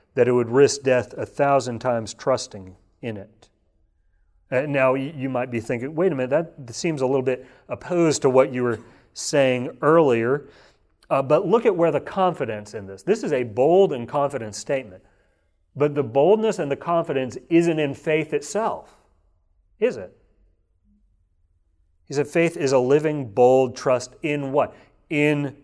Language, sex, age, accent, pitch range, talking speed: English, male, 40-59, American, 90-125 Hz, 165 wpm